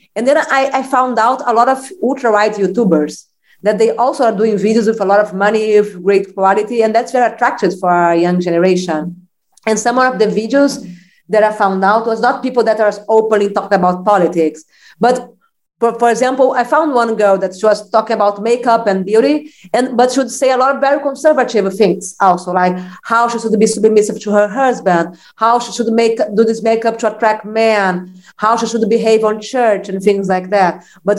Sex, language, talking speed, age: female, English, 210 wpm, 40-59